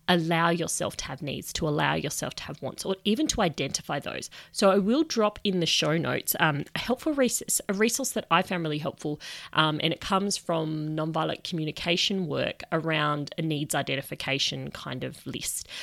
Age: 30-49